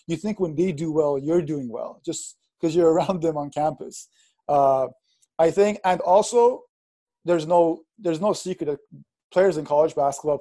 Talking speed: 180 wpm